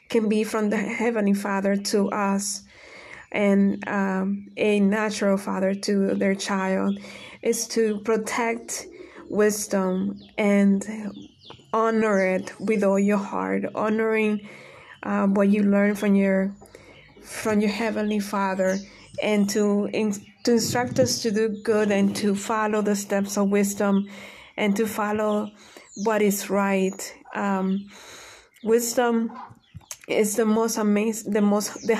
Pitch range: 200-225 Hz